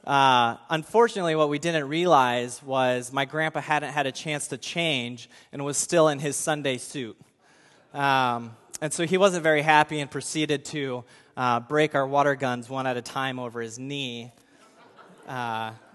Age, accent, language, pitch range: 20-39, American, English, 130-155 Hz